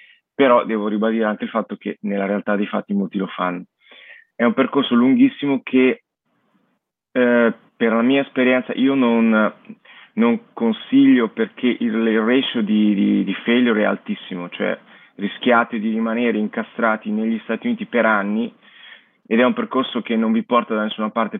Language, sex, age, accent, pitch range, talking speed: Italian, male, 20-39, native, 105-150 Hz, 165 wpm